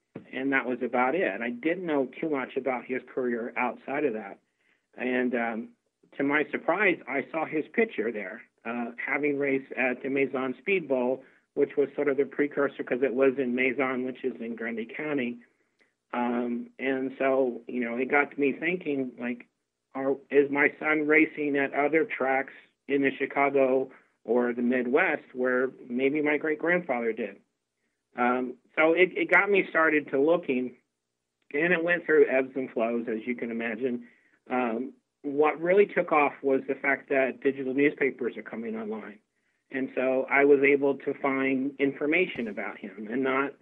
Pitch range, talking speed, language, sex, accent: 125-145 Hz, 175 wpm, English, male, American